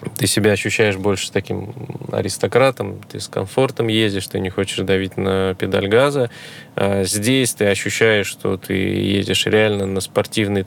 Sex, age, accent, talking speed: male, 20-39, native, 150 wpm